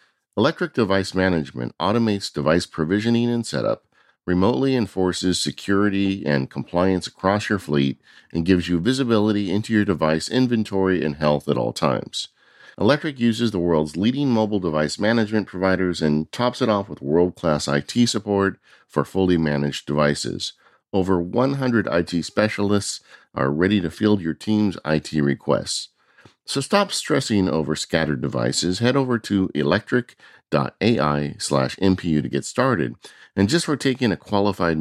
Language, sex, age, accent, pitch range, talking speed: English, male, 50-69, American, 75-110 Hz, 140 wpm